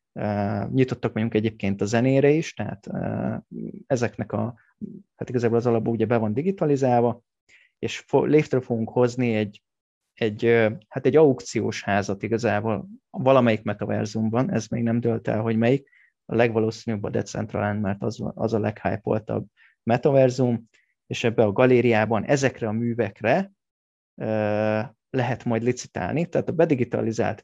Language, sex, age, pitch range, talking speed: Hungarian, male, 30-49, 105-125 Hz, 140 wpm